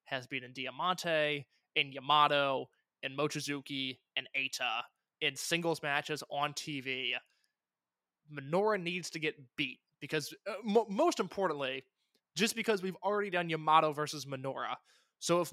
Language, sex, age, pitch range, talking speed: English, male, 20-39, 145-170 Hz, 135 wpm